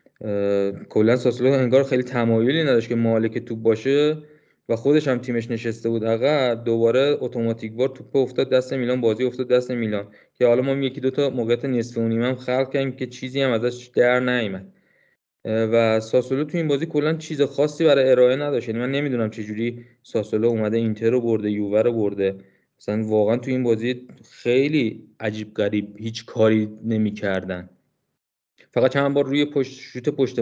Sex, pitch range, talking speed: male, 115-135 Hz, 170 wpm